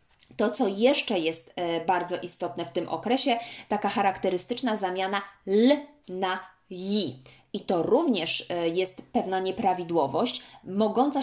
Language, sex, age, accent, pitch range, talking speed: Polish, female, 20-39, native, 180-220 Hz, 130 wpm